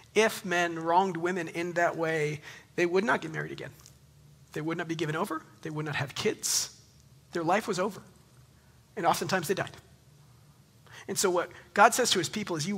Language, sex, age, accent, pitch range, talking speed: English, male, 40-59, American, 150-195 Hz, 195 wpm